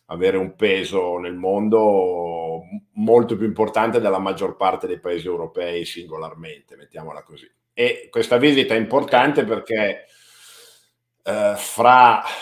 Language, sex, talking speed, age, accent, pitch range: Italian, male, 120 wpm, 50-69, native, 95-120 Hz